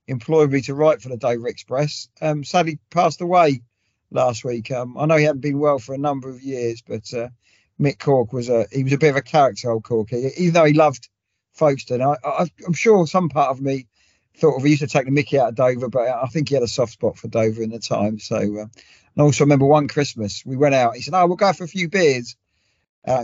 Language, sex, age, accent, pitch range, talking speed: English, male, 40-59, British, 115-145 Hz, 265 wpm